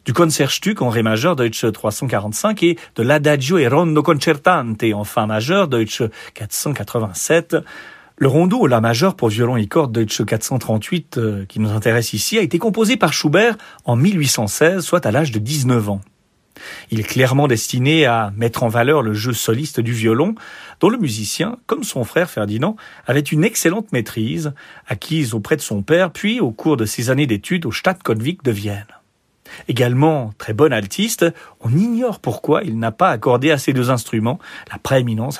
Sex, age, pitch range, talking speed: male, 40-59, 115-165 Hz, 175 wpm